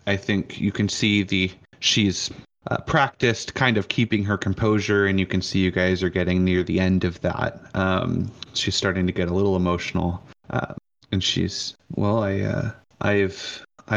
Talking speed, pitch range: 180 wpm, 95-110 Hz